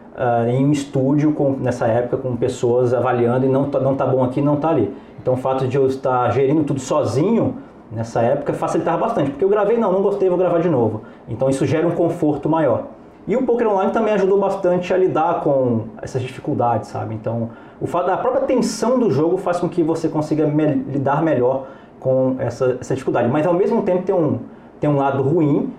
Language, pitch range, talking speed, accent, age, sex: Portuguese, 130-160 Hz, 215 wpm, Brazilian, 20-39, male